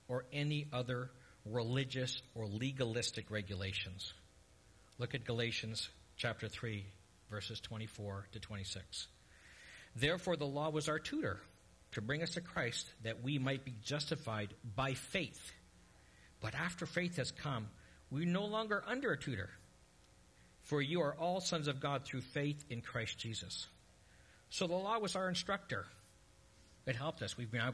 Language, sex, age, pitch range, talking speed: English, male, 50-69, 100-145 Hz, 145 wpm